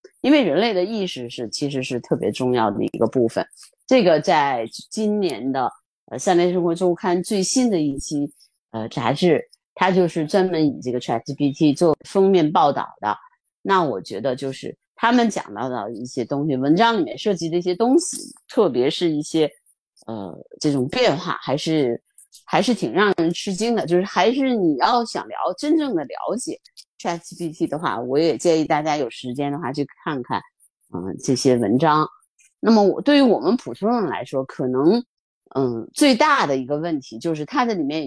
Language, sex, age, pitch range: Chinese, female, 30-49, 145-230 Hz